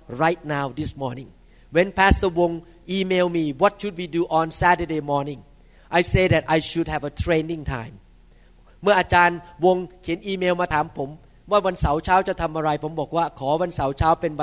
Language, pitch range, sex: Thai, 160-215 Hz, male